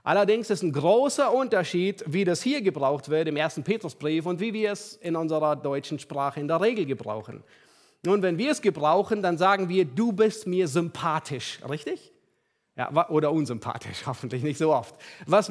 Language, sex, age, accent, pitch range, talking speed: German, male, 40-59, German, 140-200 Hz, 180 wpm